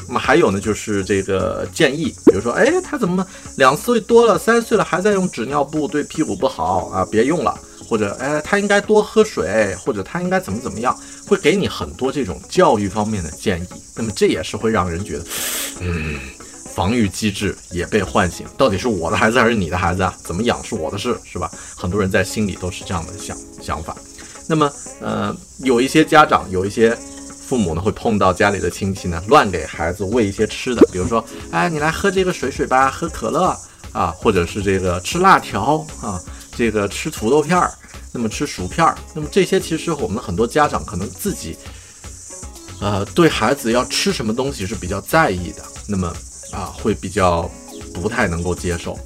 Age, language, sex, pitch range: 30-49, Chinese, male, 90-140 Hz